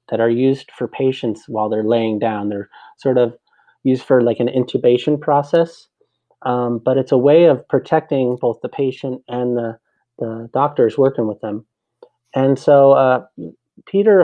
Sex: male